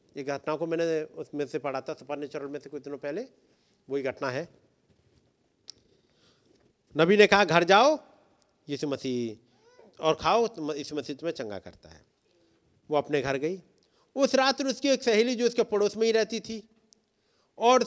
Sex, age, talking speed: male, 50-69, 180 wpm